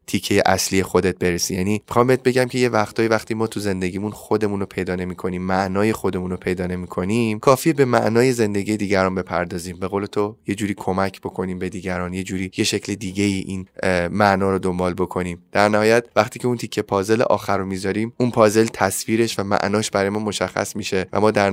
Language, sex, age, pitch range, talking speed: Persian, male, 20-39, 95-115 Hz, 200 wpm